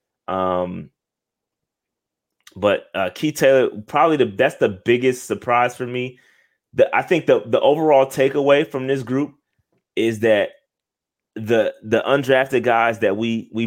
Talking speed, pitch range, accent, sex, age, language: 140 wpm, 105-125 Hz, American, male, 20-39, English